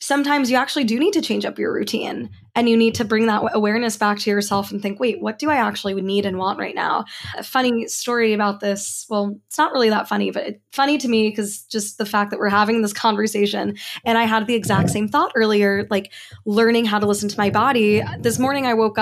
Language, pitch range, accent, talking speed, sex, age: English, 210-255 Hz, American, 245 wpm, female, 10-29